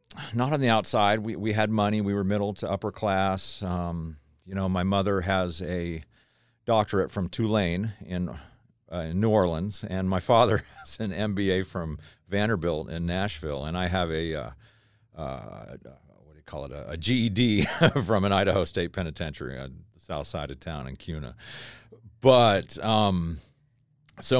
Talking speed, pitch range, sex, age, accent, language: 165 wpm, 80-105 Hz, male, 50-69, American, English